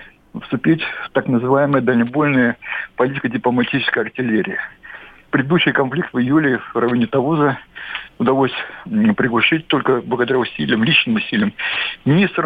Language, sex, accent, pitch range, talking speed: Russian, male, native, 125-165 Hz, 105 wpm